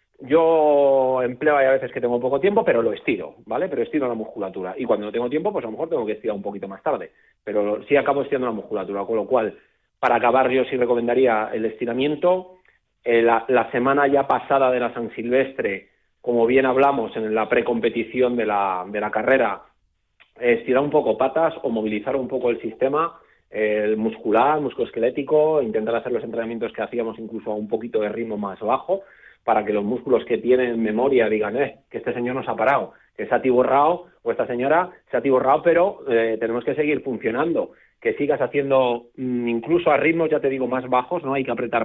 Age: 30-49